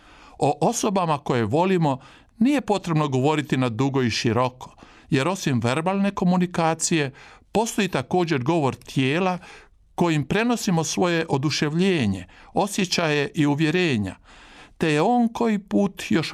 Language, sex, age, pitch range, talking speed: Croatian, male, 50-69, 130-185 Hz, 120 wpm